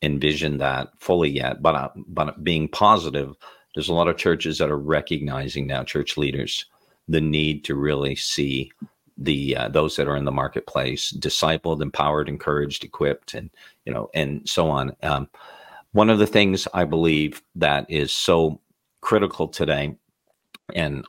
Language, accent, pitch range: English, American, 70-85 Hz